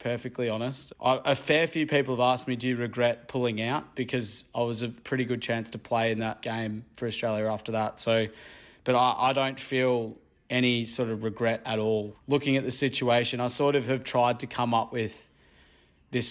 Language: English